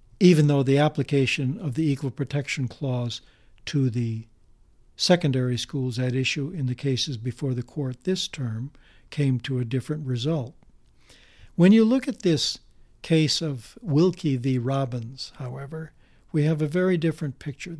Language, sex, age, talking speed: English, male, 60-79, 150 wpm